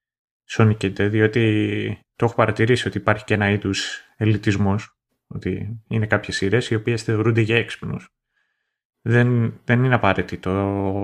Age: 30-49